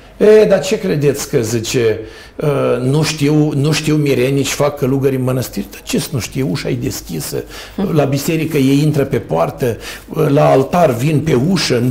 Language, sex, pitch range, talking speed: Romanian, male, 120-150 Hz, 175 wpm